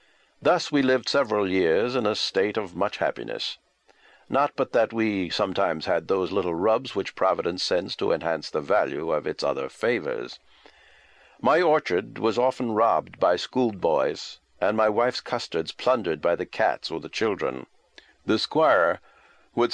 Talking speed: 160 wpm